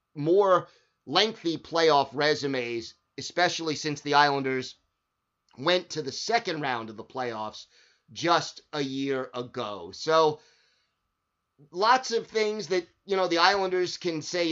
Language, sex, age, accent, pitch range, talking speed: English, male, 30-49, American, 140-180 Hz, 130 wpm